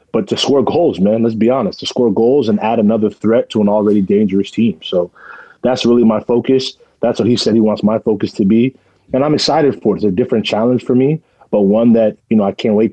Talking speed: 250 wpm